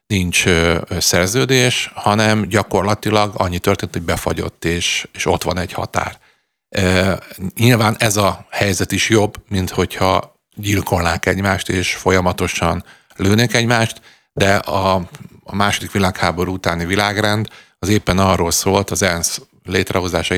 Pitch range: 90-105 Hz